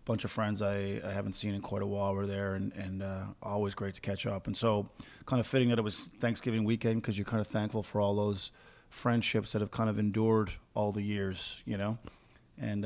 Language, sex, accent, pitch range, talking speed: English, male, American, 100-115 Hz, 240 wpm